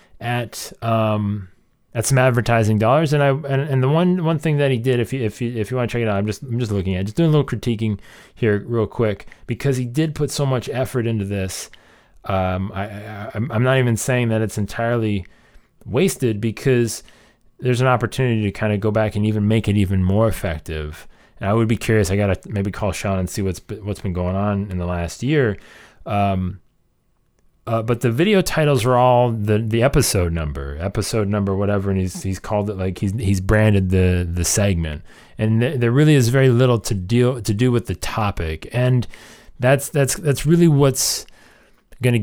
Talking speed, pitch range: 210 wpm, 100-125 Hz